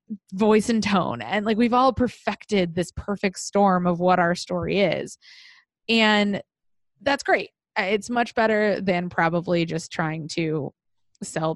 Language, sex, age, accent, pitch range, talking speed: English, female, 20-39, American, 170-205 Hz, 145 wpm